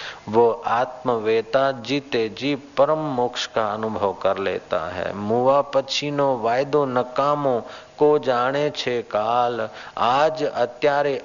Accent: native